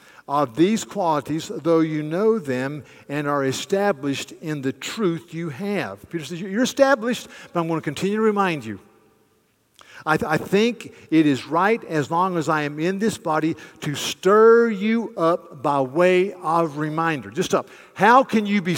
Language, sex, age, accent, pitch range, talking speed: English, male, 50-69, American, 160-215 Hz, 175 wpm